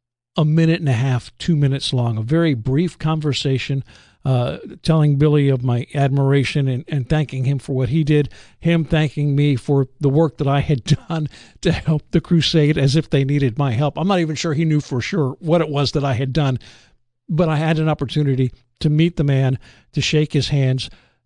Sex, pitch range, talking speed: male, 130-155 Hz, 210 wpm